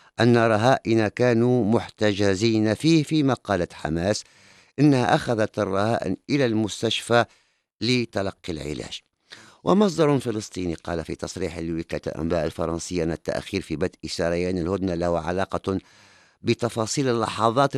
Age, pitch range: 50-69, 90-120 Hz